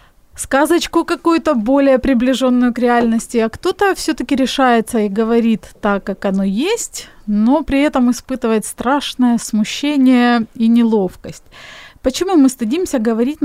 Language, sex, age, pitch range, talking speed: Ukrainian, female, 30-49, 220-265 Hz, 125 wpm